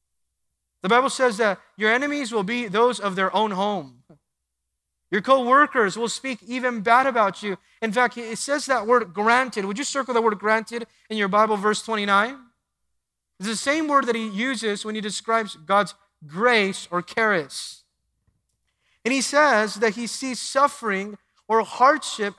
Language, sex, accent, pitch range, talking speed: English, male, American, 190-240 Hz, 165 wpm